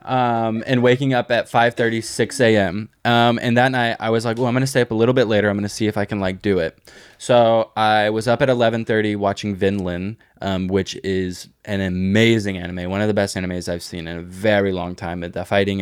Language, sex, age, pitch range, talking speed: English, male, 20-39, 95-115 Hz, 245 wpm